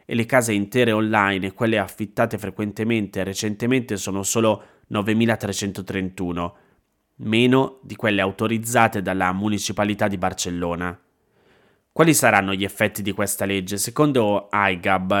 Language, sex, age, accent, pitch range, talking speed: Italian, male, 20-39, native, 100-115 Hz, 120 wpm